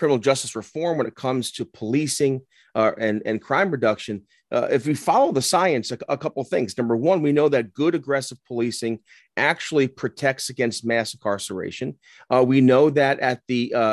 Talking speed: 185 wpm